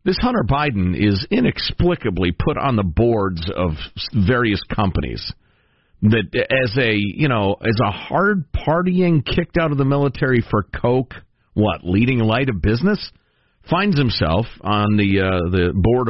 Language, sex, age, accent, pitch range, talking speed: English, male, 50-69, American, 95-145 Hz, 150 wpm